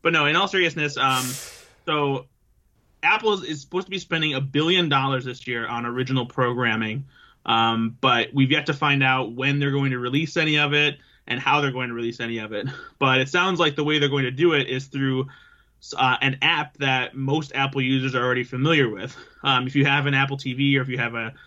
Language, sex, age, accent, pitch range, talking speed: English, male, 20-39, American, 130-145 Hz, 230 wpm